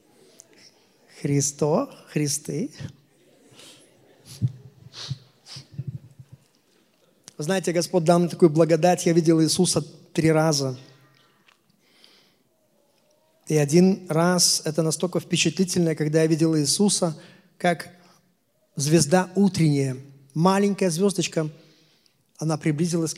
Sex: male